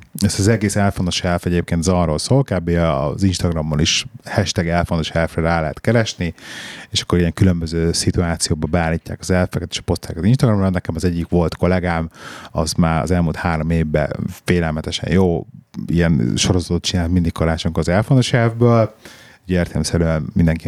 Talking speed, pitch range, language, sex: 160 wpm, 85-105 Hz, Hungarian, male